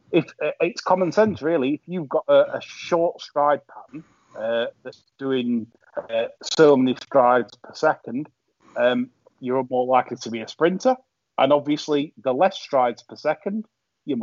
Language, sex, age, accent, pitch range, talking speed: English, male, 30-49, British, 125-155 Hz, 160 wpm